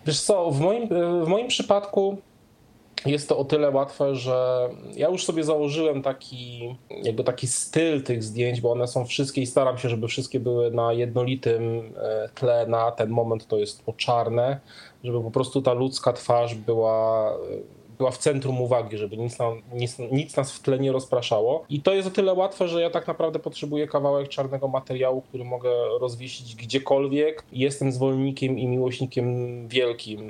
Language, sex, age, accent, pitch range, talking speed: Polish, male, 20-39, native, 115-135 Hz, 170 wpm